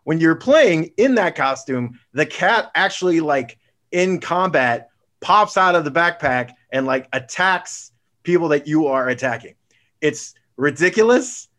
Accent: American